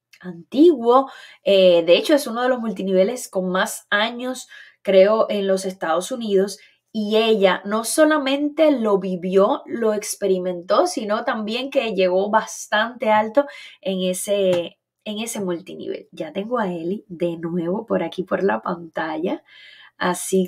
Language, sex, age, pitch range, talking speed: Spanish, female, 20-39, 190-260 Hz, 140 wpm